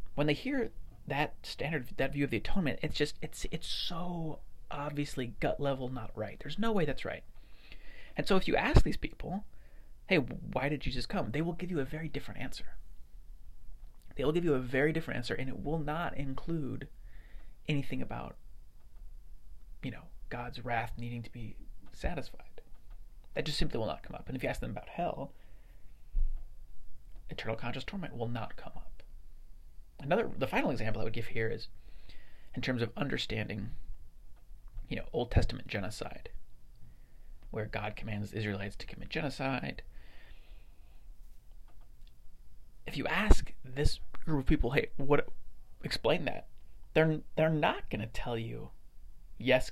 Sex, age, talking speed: male, 30-49, 160 wpm